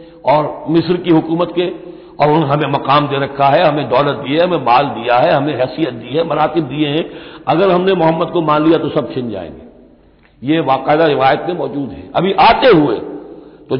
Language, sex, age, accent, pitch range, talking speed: Hindi, male, 60-79, native, 155-195 Hz, 200 wpm